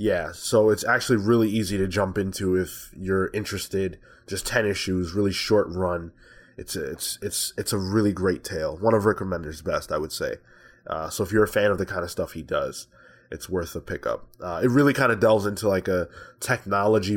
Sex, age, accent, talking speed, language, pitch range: male, 20-39, American, 215 wpm, English, 90-110 Hz